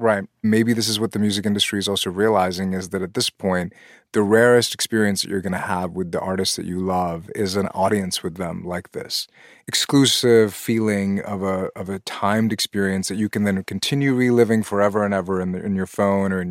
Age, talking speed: 30-49, 220 wpm